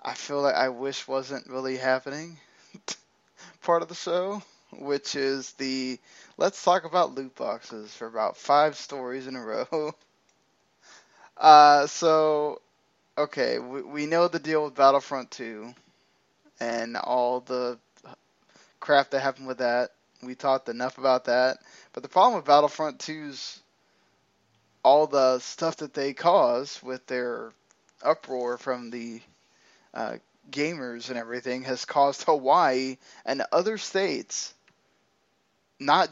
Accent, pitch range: American, 125-155 Hz